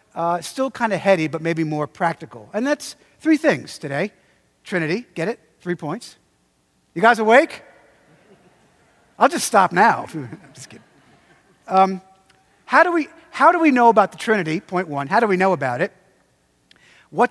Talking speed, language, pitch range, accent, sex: 165 wpm, English, 170-235 Hz, American, male